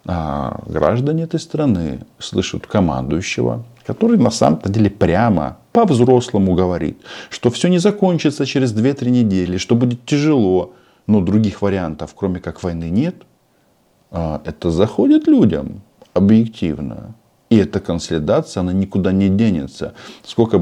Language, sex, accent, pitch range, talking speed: Russian, male, native, 85-120 Hz, 120 wpm